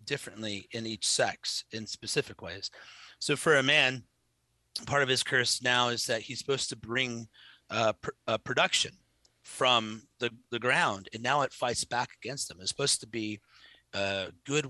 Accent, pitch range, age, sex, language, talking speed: American, 115-140 Hz, 30-49, male, English, 175 wpm